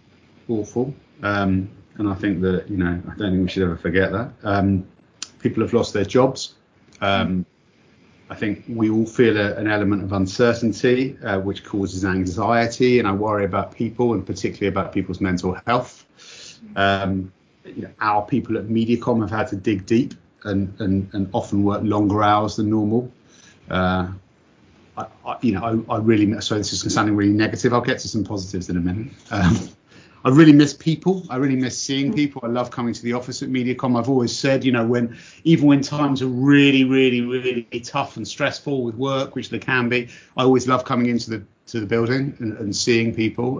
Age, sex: 30-49, male